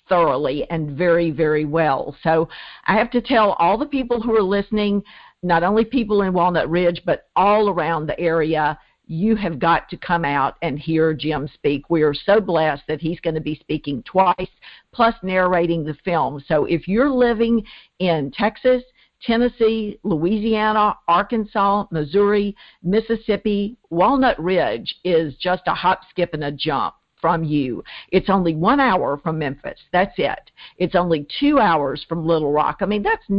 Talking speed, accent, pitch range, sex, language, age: 165 wpm, American, 160-210 Hz, female, English, 50-69